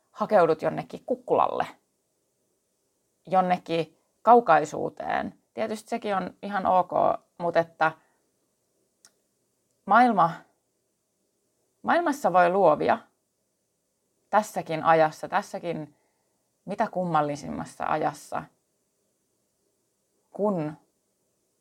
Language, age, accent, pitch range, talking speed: Finnish, 30-49, native, 155-190 Hz, 65 wpm